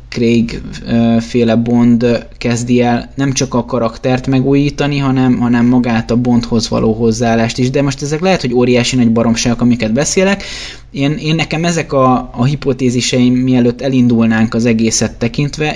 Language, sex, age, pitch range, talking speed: Hungarian, male, 20-39, 110-130 Hz, 150 wpm